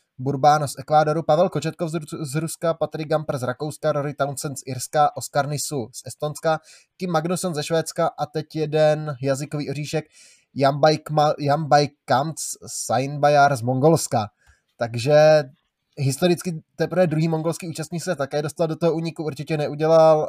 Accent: native